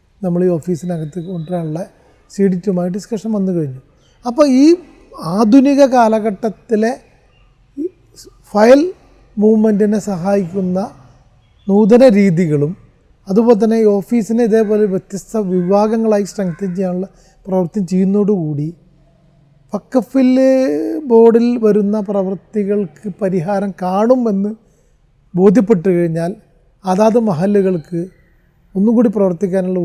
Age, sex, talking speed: 30-49, male, 80 wpm